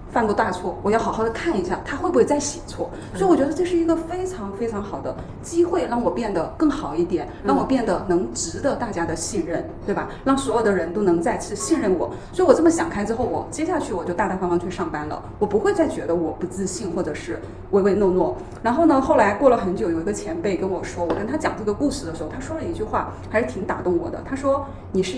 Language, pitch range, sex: Chinese, 200-325 Hz, female